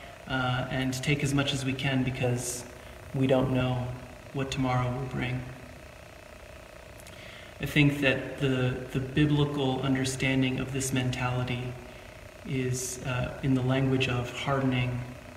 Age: 30-49